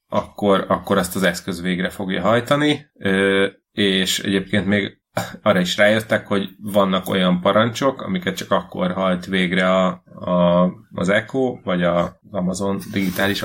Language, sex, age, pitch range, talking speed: Hungarian, male, 30-49, 95-105 Hz, 145 wpm